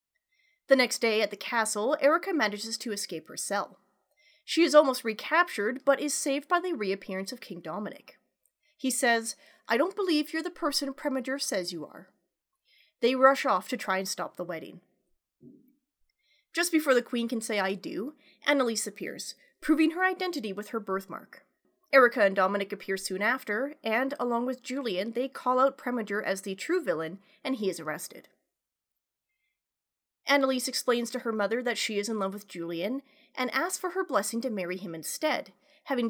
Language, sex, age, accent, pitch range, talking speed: English, female, 30-49, American, 205-290 Hz, 175 wpm